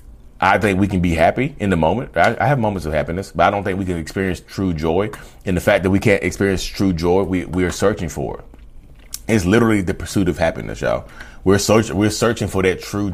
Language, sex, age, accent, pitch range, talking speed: English, male, 30-49, American, 85-110 Hz, 240 wpm